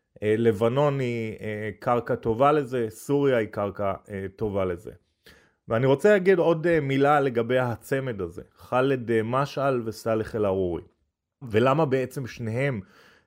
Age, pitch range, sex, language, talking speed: 30-49, 110-135 Hz, male, Hebrew, 115 wpm